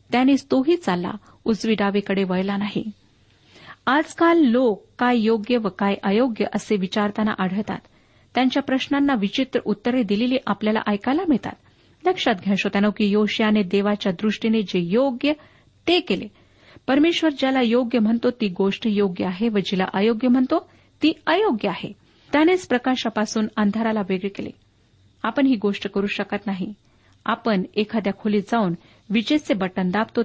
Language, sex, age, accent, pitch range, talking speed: Marathi, female, 40-59, native, 205-260 Hz, 135 wpm